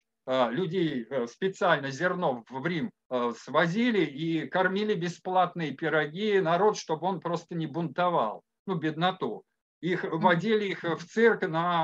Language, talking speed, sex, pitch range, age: Russian, 120 wpm, male, 155-205 Hz, 50-69